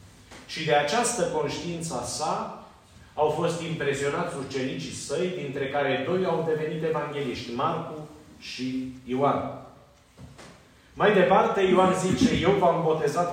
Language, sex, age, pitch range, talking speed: Romanian, male, 30-49, 125-165 Hz, 115 wpm